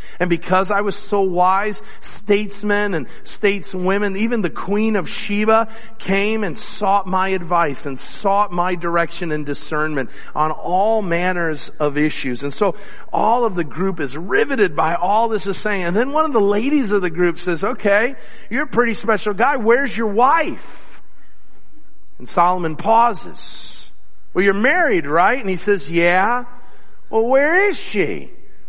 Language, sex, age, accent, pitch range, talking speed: English, male, 50-69, American, 180-230 Hz, 160 wpm